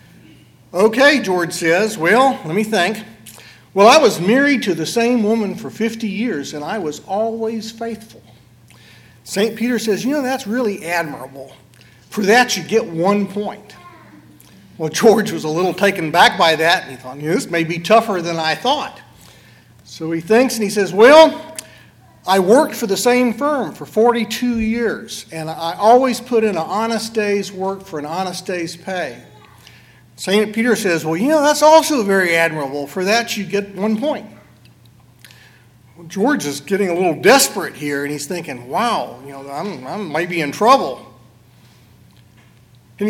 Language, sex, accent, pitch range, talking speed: English, male, American, 160-230 Hz, 170 wpm